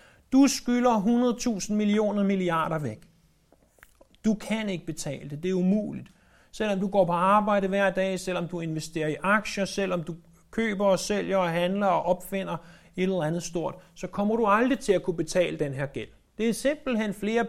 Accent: native